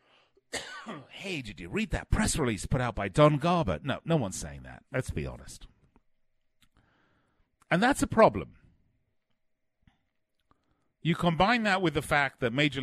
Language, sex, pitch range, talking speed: English, male, 105-135 Hz, 150 wpm